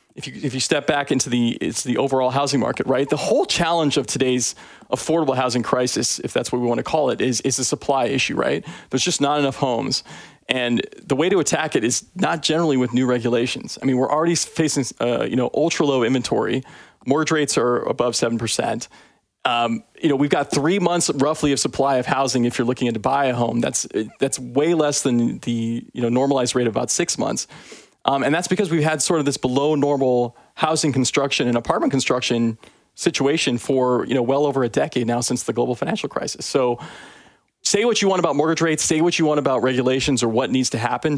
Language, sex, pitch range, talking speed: English, male, 120-145 Hz, 220 wpm